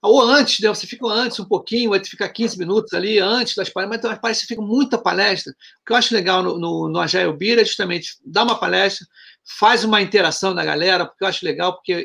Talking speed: 235 wpm